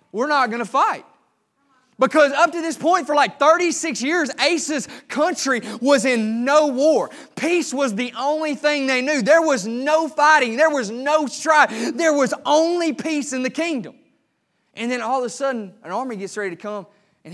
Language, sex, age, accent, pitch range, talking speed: English, male, 20-39, American, 205-270 Hz, 190 wpm